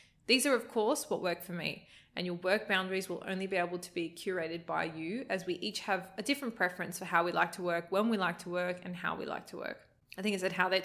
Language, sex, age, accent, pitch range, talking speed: English, female, 20-39, Australian, 175-205 Hz, 280 wpm